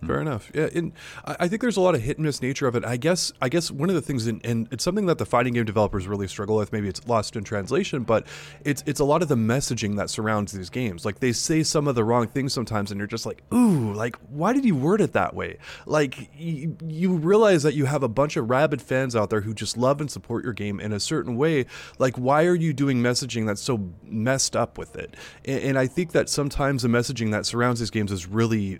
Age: 20-39